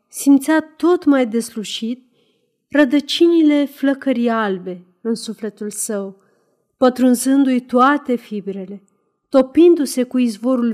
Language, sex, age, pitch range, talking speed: Romanian, female, 30-49, 205-270 Hz, 90 wpm